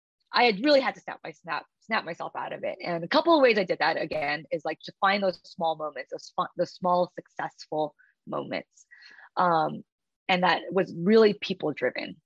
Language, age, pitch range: English, 20-39, 165-235 Hz